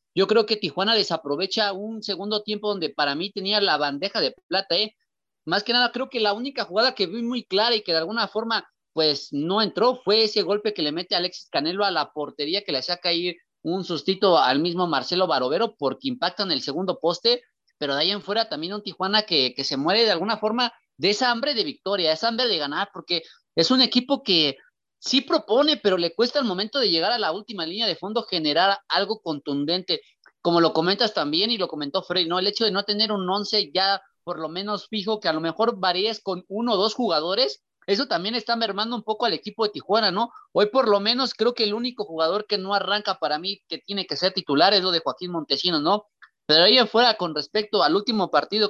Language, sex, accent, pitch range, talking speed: Spanish, male, Mexican, 175-225 Hz, 230 wpm